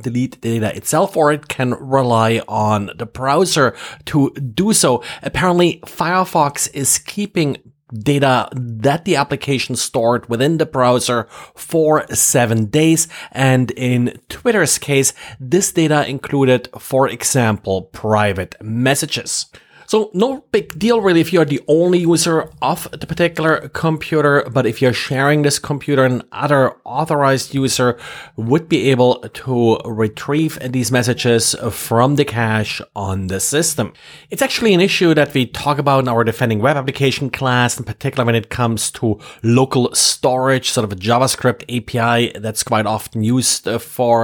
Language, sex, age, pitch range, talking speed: English, male, 30-49, 115-145 Hz, 150 wpm